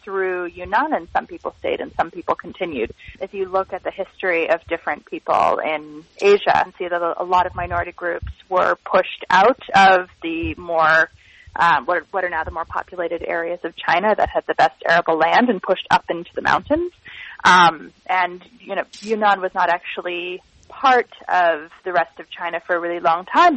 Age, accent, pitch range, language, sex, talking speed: 30-49, American, 175-215 Hz, English, female, 195 wpm